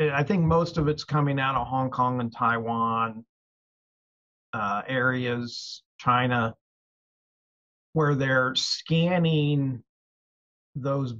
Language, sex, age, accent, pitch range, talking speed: English, male, 40-59, American, 115-140 Hz, 100 wpm